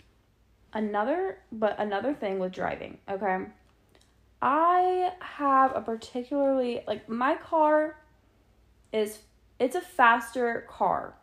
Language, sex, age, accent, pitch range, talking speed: English, female, 20-39, American, 185-245 Hz, 100 wpm